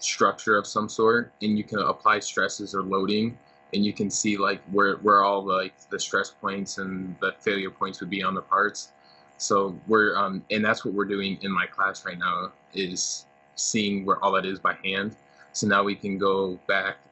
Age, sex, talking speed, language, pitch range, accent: 20-39, male, 210 wpm, English, 70-100 Hz, American